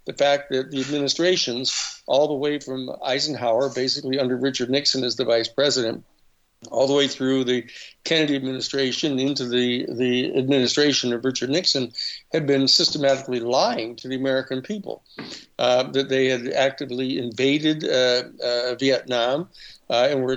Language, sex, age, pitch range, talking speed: English, male, 60-79, 125-140 Hz, 155 wpm